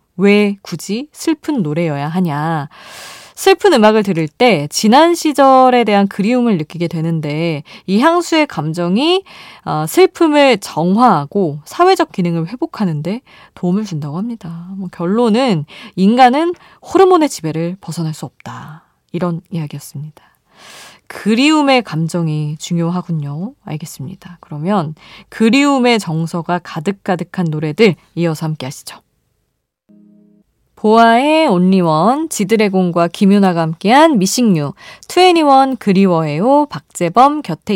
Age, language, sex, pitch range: 20-39, Korean, female, 165-250 Hz